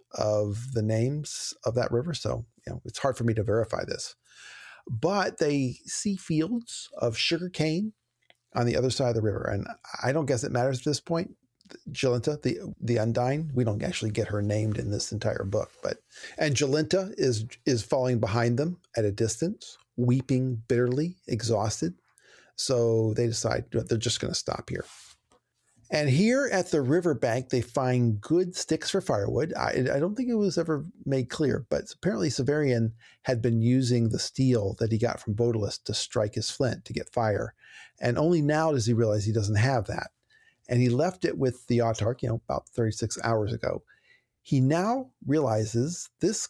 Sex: male